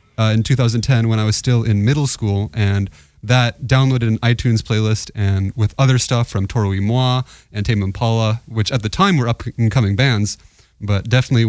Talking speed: 185 wpm